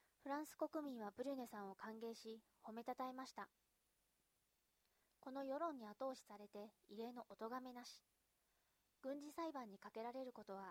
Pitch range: 210-270 Hz